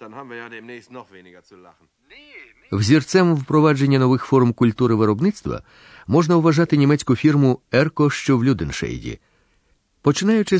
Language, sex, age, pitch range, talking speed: Ukrainian, male, 40-59, 115-160 Hz, 85 wpm